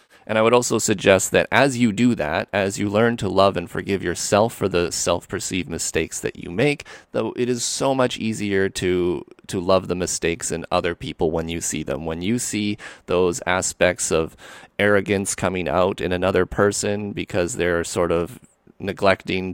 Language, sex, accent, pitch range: English, male, American, 90-120 Hz